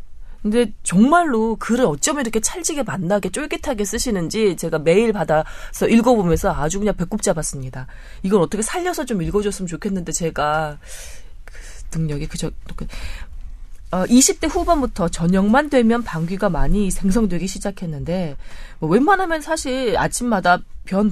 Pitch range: 160-240 Hz